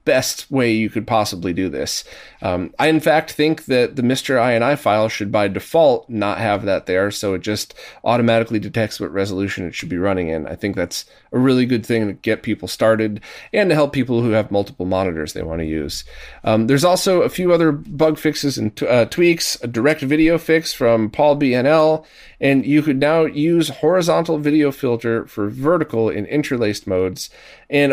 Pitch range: 105-140 Hz